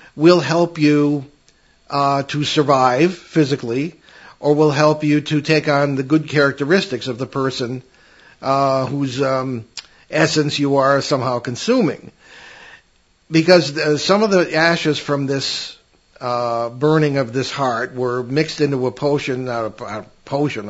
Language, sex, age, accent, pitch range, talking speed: English, male, 50-69, American, 130-160 Hz, 135 wpm